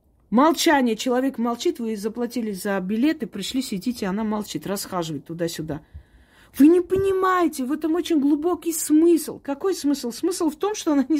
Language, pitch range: Russian, 215-310 Hz